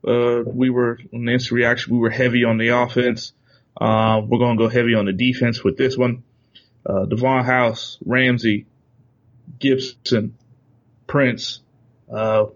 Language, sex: English, male